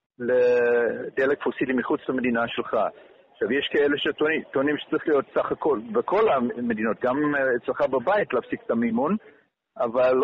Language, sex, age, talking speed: Hebrew, male, 50-69, 130 wpm